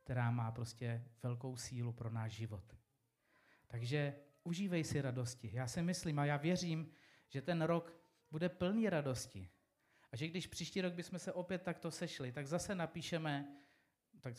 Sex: male